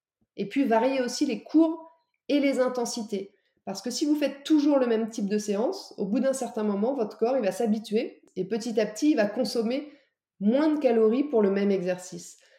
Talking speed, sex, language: 210 wpm, female, French